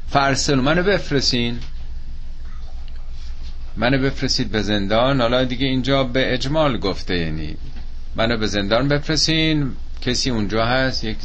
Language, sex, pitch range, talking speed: Persian, male, 75-125 Hz, 130 wpm